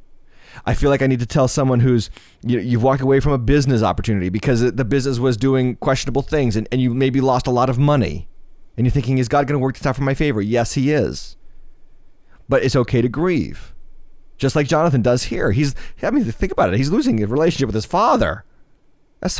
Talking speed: 230 wpm